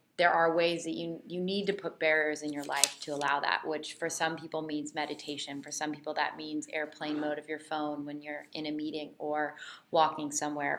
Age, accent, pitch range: 20-39, American, 150-165 Hz